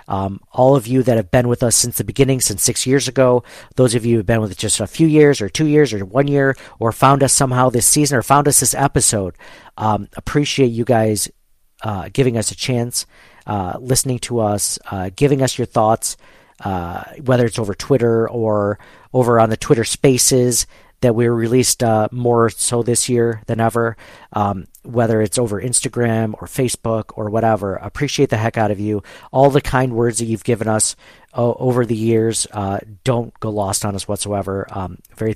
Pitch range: 110-130 Hz